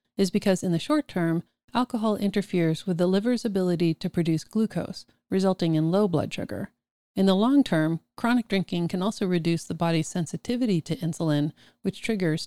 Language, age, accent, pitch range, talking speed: English, 40-59, American, 160-205 Hz, 175 wpm